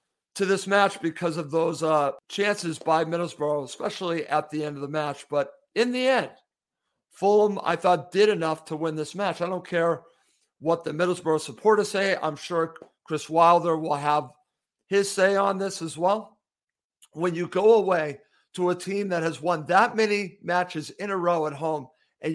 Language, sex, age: English, male, 50-69